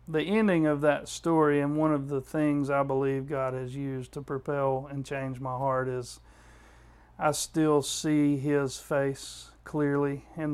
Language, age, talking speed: English, 40-59, 165 wpm